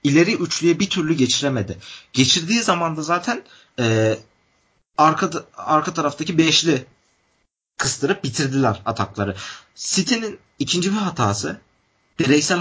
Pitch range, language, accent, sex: 125-170 Hz, Turkish, native, male